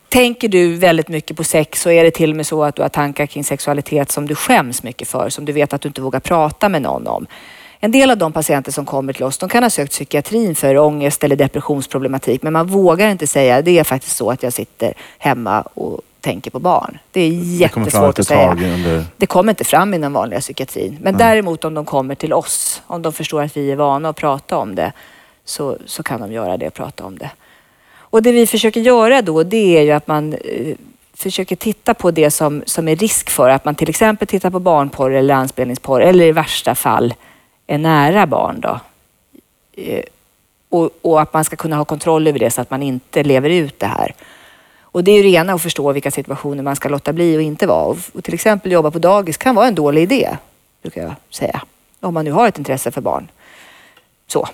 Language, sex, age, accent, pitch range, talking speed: Swedish, female, 30-49, native, 140-180 Hz, 230 wpm